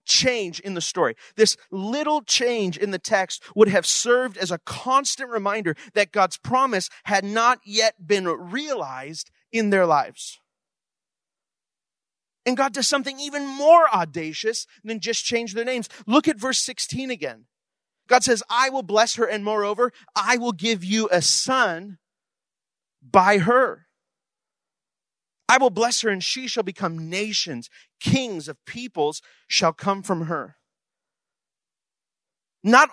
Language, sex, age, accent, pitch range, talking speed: English, male, 30-49, American, 170-245 Hz, 140 wpm